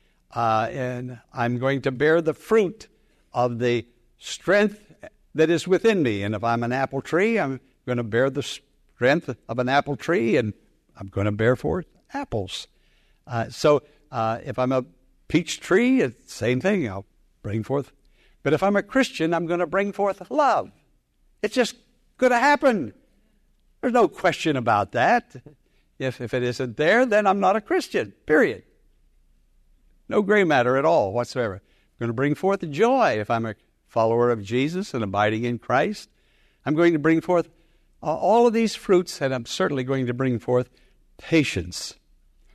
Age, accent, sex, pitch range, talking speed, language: 60-79, American, male, 115-170 Hz, 175 wpm, English